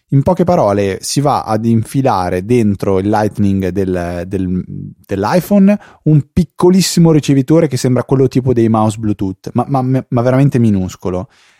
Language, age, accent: Italian, 20-39, native